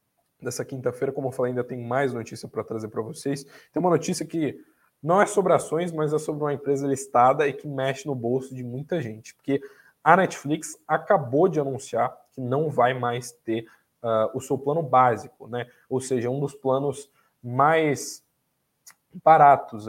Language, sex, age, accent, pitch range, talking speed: Portuguese, male, 20-39, Brazilian, 120-145 Hz, 180 wpm